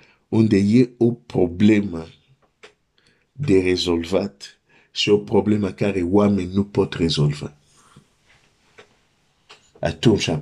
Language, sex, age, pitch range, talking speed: Romanian, male, 50-69, 100-125 Hz, 90 wpm